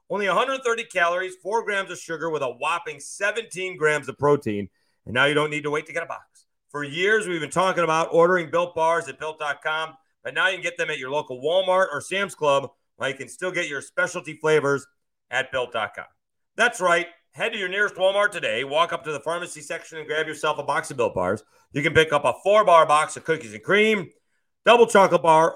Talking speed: 225 wpm